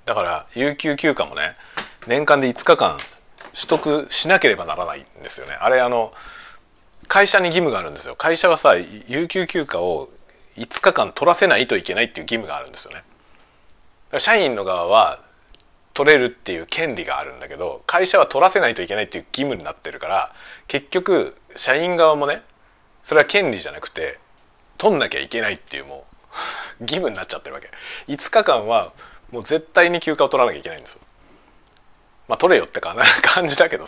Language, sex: Japanese, male